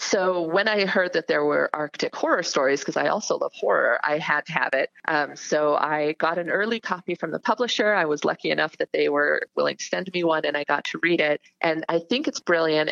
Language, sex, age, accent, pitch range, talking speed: English, female, 30-49, American, 150-185 Hz, 245 wpm